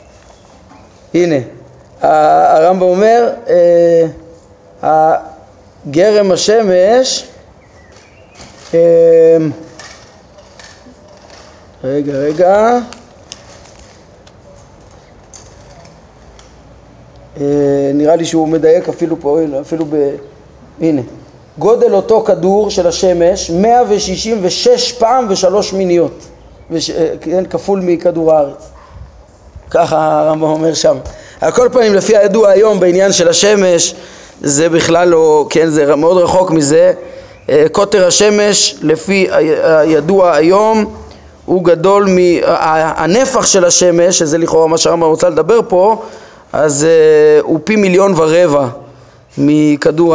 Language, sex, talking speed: Hebrew, male, 90 wpm